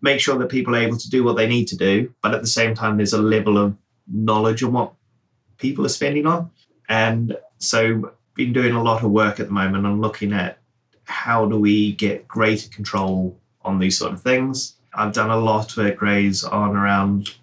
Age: 20-39